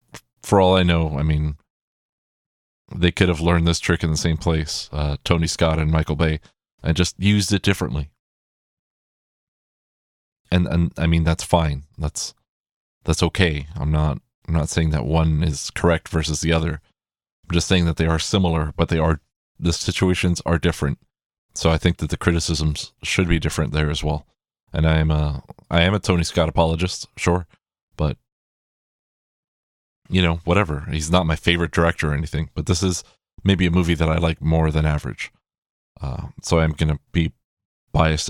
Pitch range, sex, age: 80-90 Hz, male, 30-49